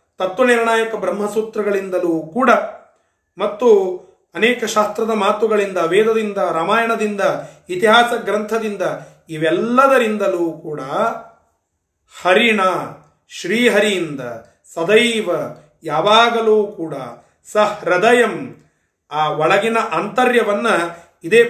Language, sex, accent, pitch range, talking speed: Kannada, male, native, 175-230 Hz, 65 wpm